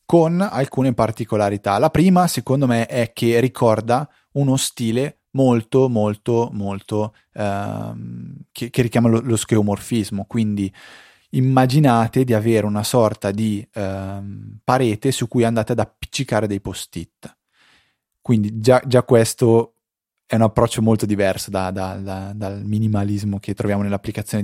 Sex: male